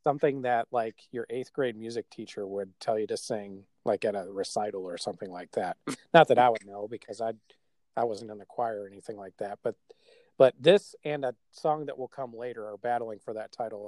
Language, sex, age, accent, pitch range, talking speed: English, male, 40-59, American, 110-145 Hz, 225 wpm